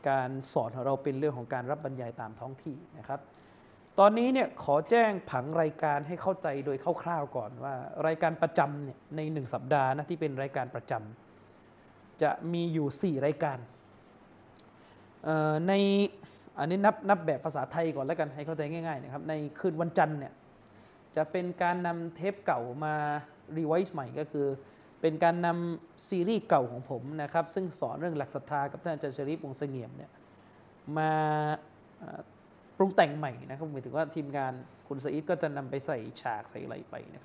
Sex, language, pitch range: male, Thai, 140-175 Hz